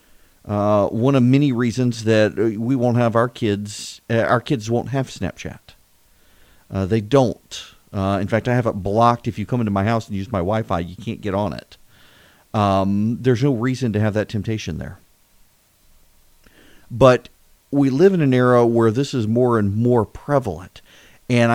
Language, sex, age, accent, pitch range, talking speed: English, male, 40-59, American, 120-185 Hz, 185 wpm